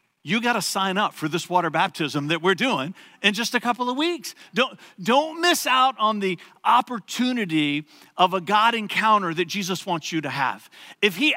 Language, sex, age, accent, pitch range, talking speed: English, male, 50-69, American, 160-240 Hz, 195 wpm